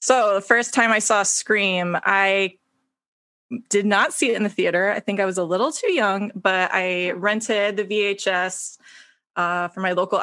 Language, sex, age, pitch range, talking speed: English, female, 20-39, 180-210 Hz, 190 wpm